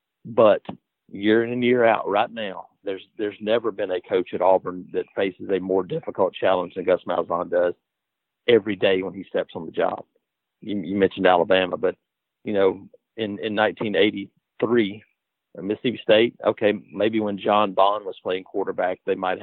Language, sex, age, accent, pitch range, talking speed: English, male, 40-59, American, 95-120 Hz, 175 wpm